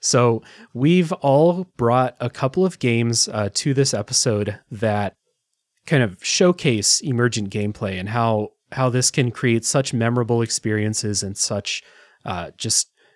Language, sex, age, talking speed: English, male, 30-49, 140 wpm